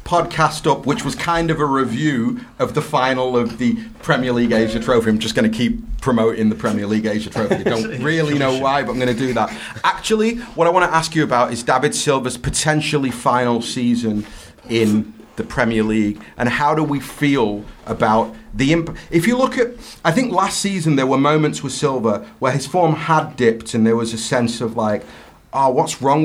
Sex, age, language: male, 30-49, English